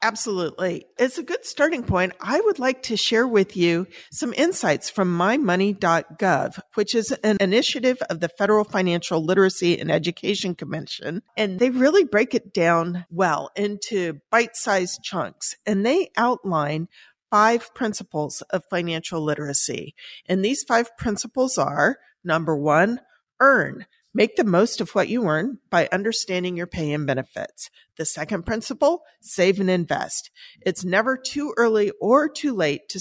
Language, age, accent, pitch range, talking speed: English, 50-69, American, 175-240 Hz, 150 wpm